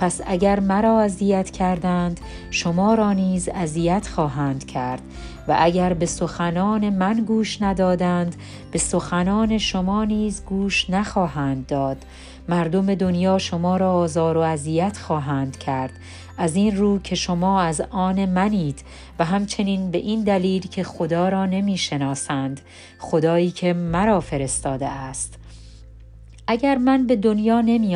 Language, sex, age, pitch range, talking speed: Persian, female, 40-59, 150-195 Hz, 130 wpm